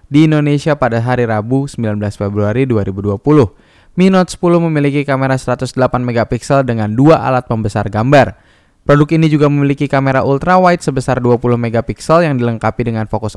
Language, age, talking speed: Indonesian, 10-29, 145 wpm